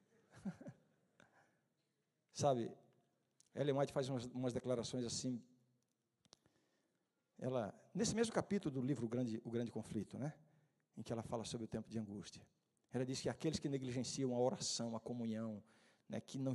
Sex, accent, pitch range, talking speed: male, Brazilian, 125-155 Hz, 150 wpm